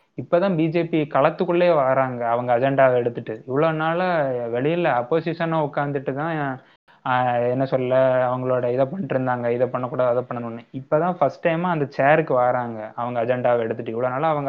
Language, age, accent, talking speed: Tamil, 20-39, native, 140 wpm